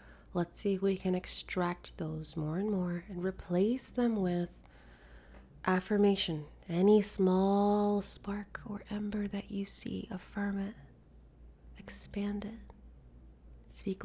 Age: 20-39